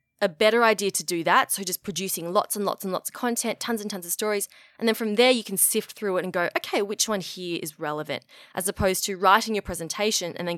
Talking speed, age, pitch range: 260 wpm, 20-39, 170-225 Hz